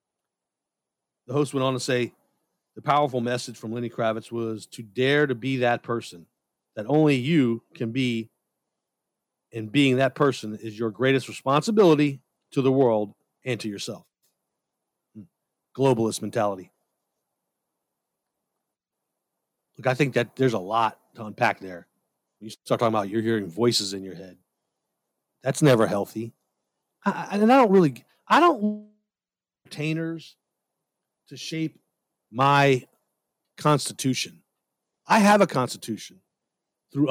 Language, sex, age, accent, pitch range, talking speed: English, male, 40-59, American, 120-160 Hz, 130 wpm